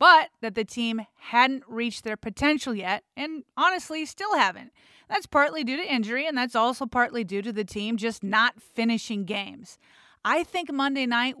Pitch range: 215-275 Hz